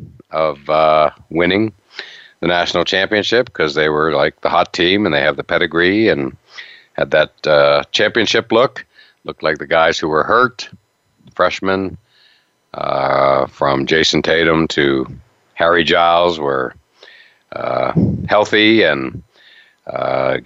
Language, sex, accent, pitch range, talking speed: English, male, American, 75-90 Hz, 130 wpm